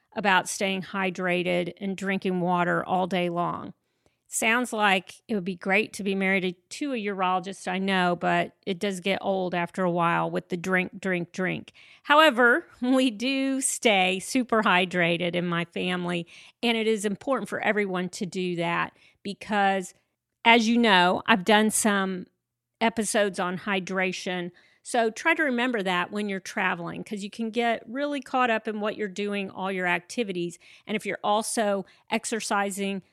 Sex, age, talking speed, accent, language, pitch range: female, 40-59, 165 wpm, American, English, 180-220 Hz